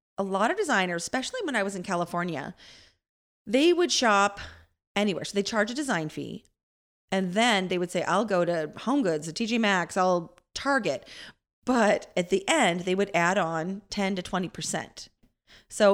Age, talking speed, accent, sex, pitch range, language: 30-49, 180 wpm, American, female, 170-250 Hz, English